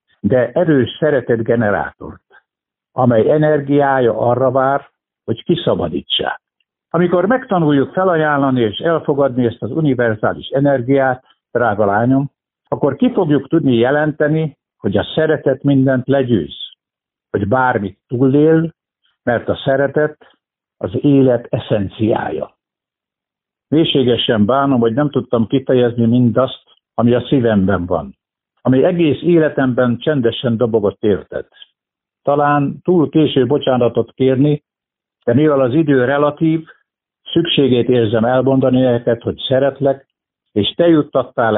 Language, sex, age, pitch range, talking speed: Hungarian, male, 60-79, 115-145 Hz, 110 wpm